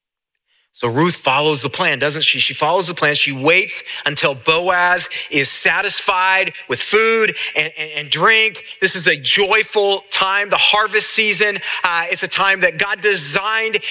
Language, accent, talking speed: English, American, 165 wpm